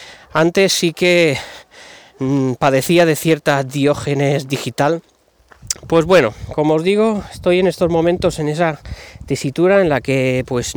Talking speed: 140 wpm